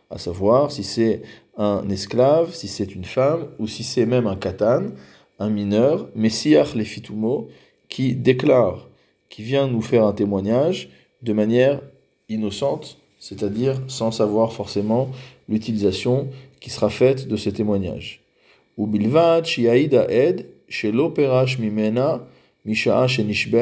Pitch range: 105-130 Hz